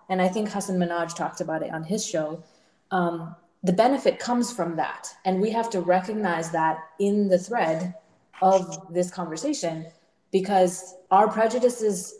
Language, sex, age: English, female, 20-39